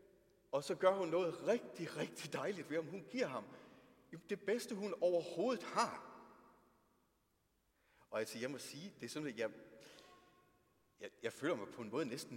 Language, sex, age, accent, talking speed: Danish, male, 30-49, native, 175 wpm